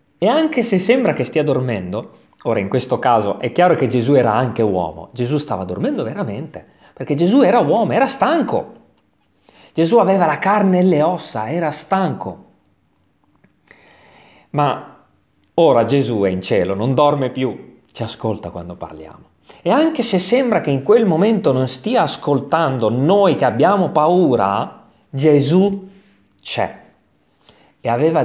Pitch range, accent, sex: 115-195 Hz, native, male